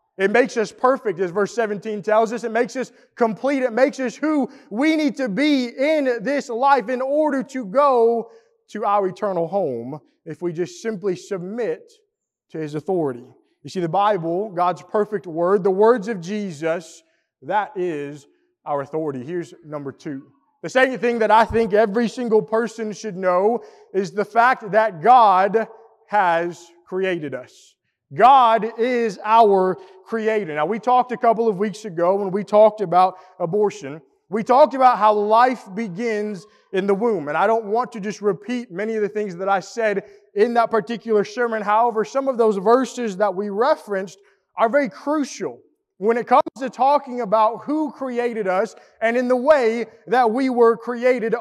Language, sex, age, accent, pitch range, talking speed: English, male, 20-39, American, 195-240 Hz, 175 wpm